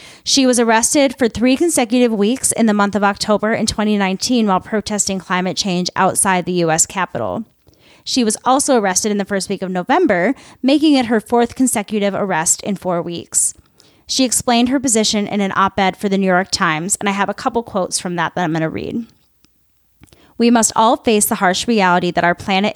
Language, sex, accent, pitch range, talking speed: English, female, American, 185-230 Hz, 200 wpm